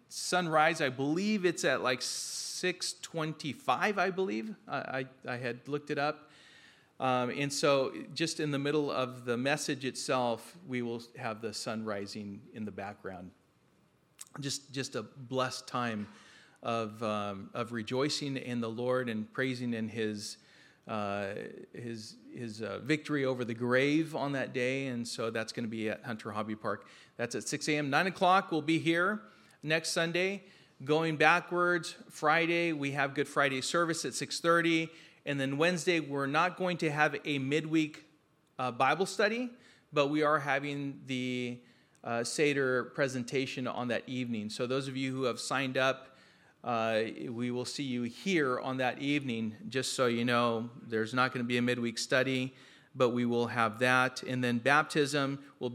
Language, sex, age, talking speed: English, male, 40-59, 170 wpm